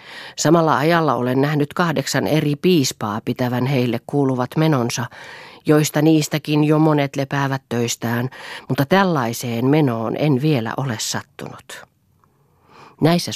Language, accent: Finnish, native